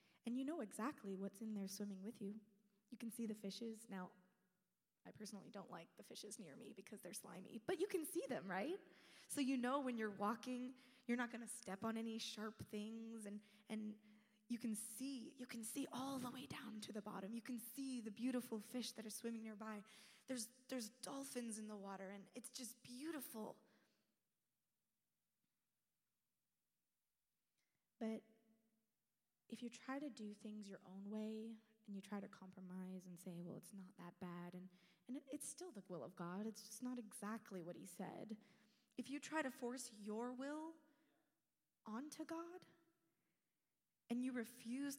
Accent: American